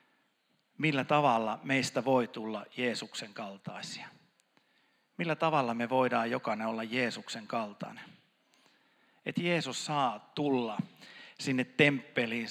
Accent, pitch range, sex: native, 120-140 Hz, male